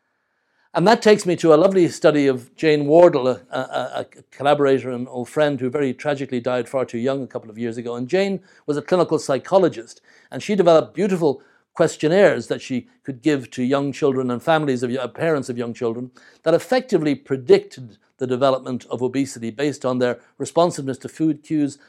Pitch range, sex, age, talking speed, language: 125-160 Hz, male, 60-79, 185 wpm, English